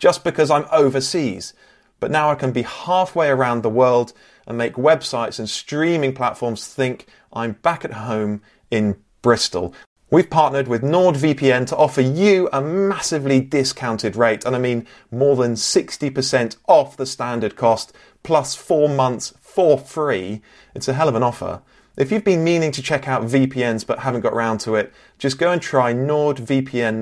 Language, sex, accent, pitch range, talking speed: English, male, British, 110-145 Hz, 170 wpm